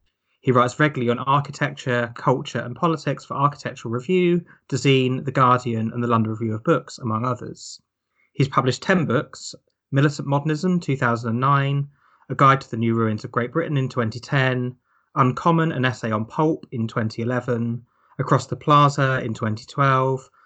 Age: 20-39